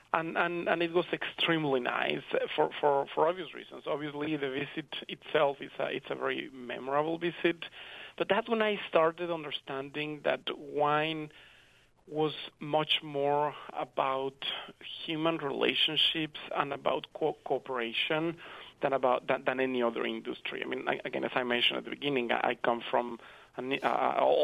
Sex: male